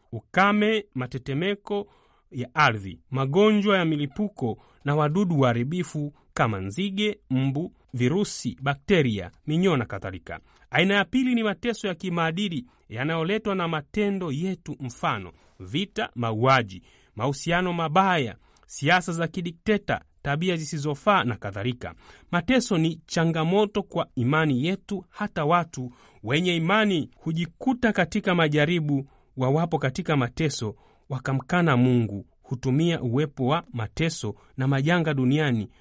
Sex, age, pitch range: male, 30-49, 125-180 Hz